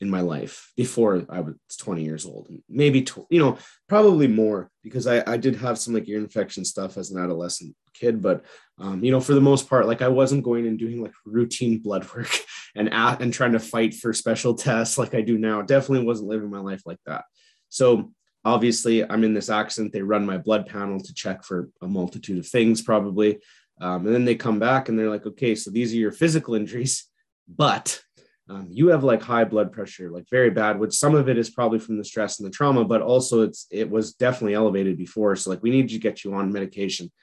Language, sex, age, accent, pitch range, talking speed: English, male, 30-49, American, 100-120 Hz, 225 wpm